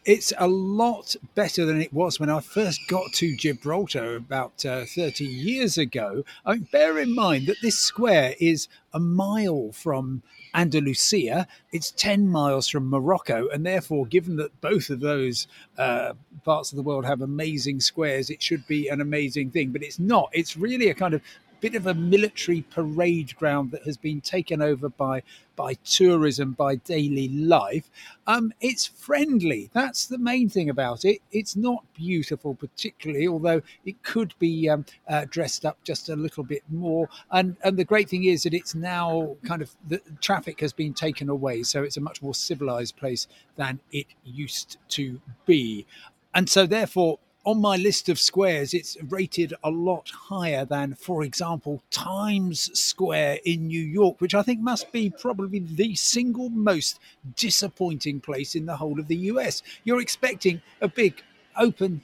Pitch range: 145-195 Hz